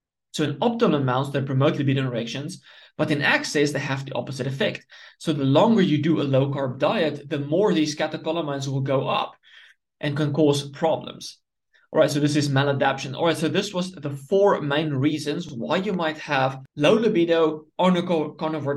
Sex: male